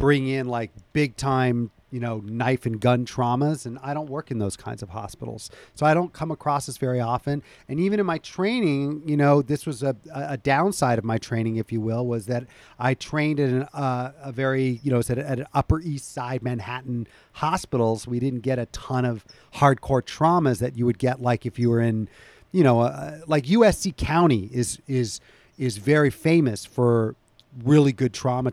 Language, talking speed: English, 200 wpm